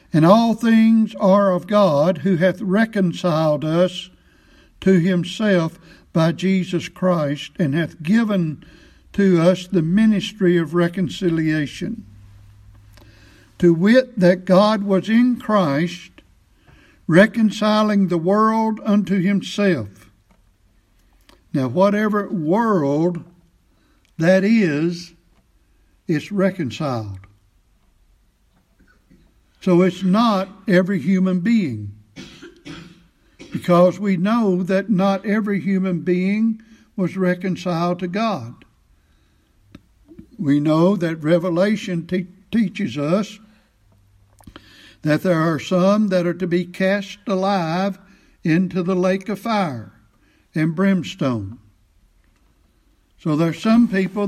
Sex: male